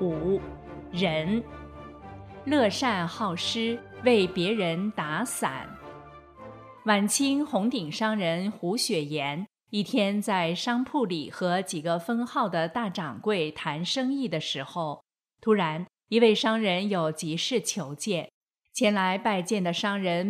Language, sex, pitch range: Chinese, female, 170-220 Hz